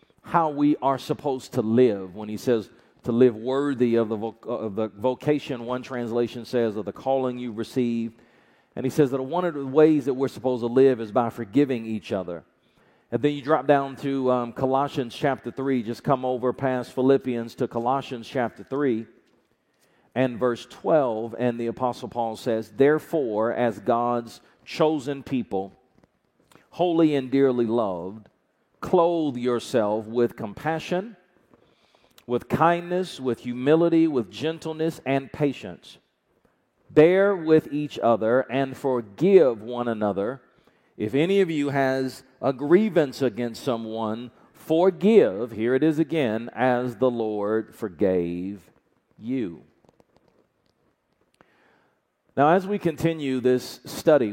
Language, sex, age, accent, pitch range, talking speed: English, male, 50-69, American, 115-140 Hz, 140 wpm